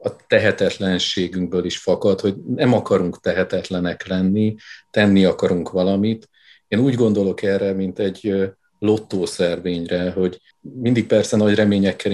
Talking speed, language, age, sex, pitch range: 120 wpm, Hungarian, 50-69, male, 95-105 Hz